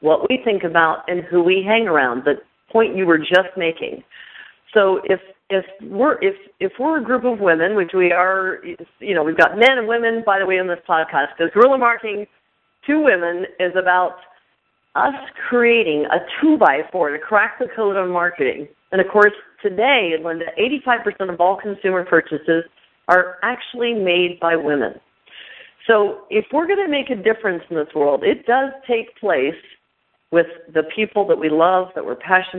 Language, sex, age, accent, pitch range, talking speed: English, female, 50-69, American, 170-220 Hz, 180 wpm